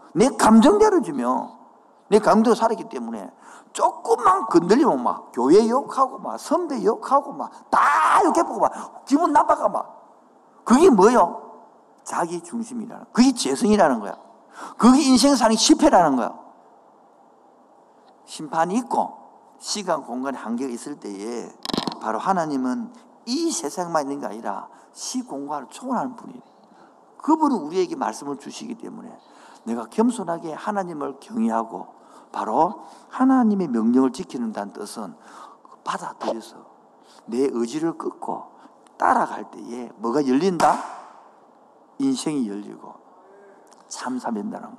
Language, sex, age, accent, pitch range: Korean, male, 50-69, native, 175-280 Hz